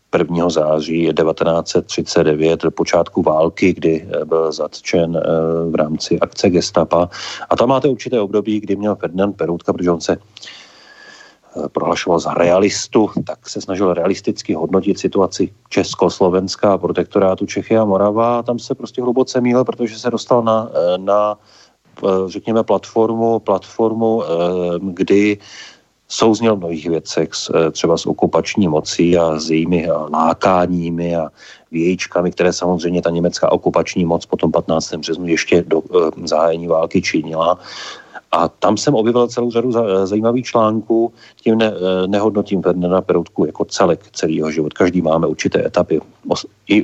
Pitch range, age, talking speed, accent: 85-110 Hz, 40-59, 135 wpm, native